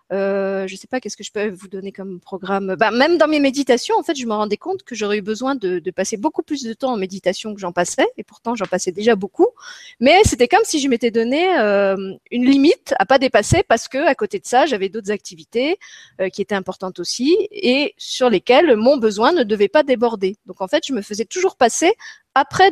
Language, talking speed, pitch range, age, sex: French, 240 wpm, 200-295 Hz, 30-49, female